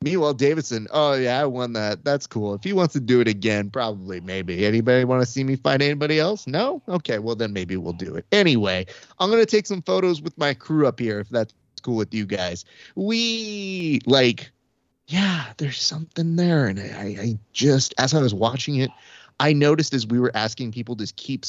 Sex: male